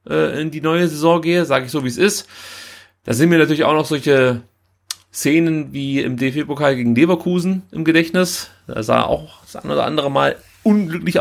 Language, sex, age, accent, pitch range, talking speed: German, male, 30-49, German, 140-185 Hz, 185 wpm